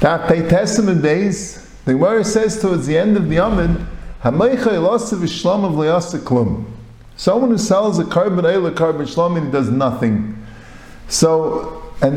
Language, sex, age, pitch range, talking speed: English, male, 50-69, 125-200 Hz, 165 wpm